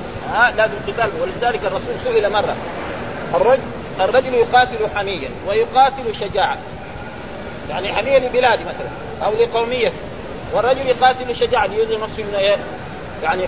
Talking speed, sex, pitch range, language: 110 wpm, male, 200-250 Hz, Arabic